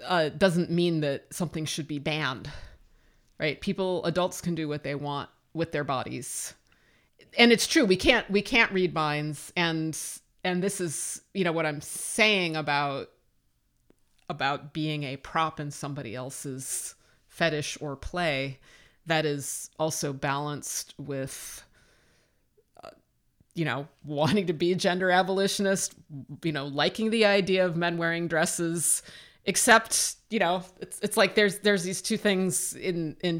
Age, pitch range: 30-49, 145-190 Hz